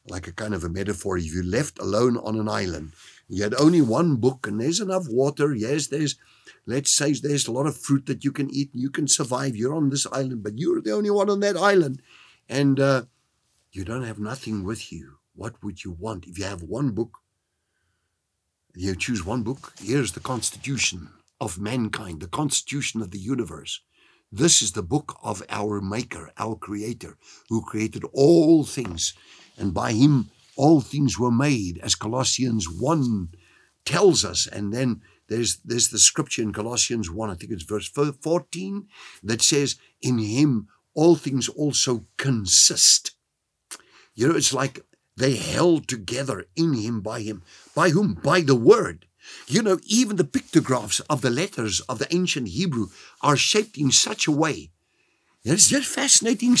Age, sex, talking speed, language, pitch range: 50-69, male, 175 wpm, English, 105-145 Hz